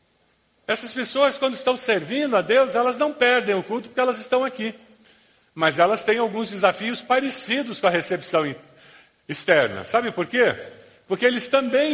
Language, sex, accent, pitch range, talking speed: Portuguese, male, Brazilian, 150-220 Hz, 160 wpm